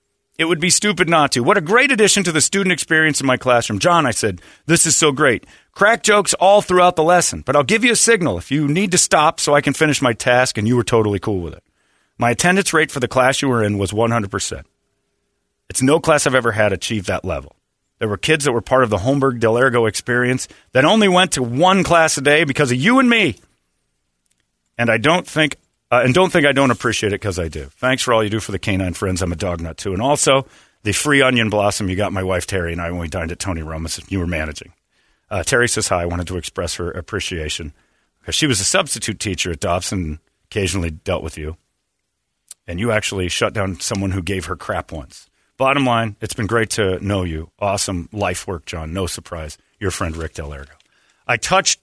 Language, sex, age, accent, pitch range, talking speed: English, male, 40-59, American, 95-145 Hz, 235 wpm